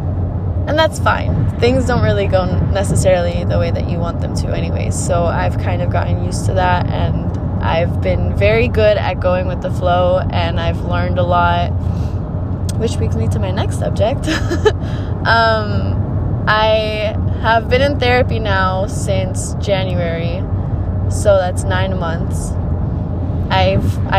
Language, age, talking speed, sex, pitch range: English, 20-39, 150 wpm, female, 90-100 Hz